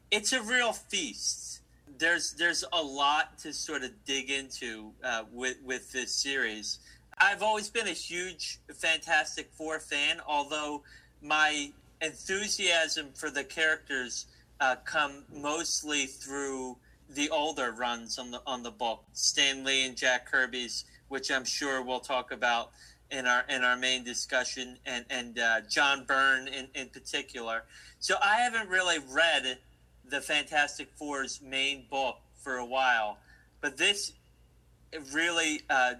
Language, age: English, 30-49